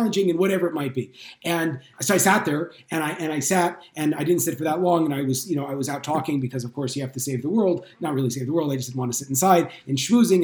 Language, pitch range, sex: English, 140-180 Hz, male